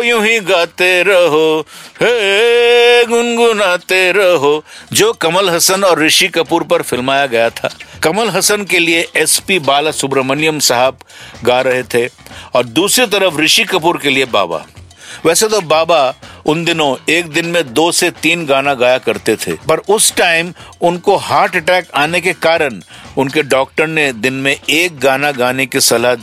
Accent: native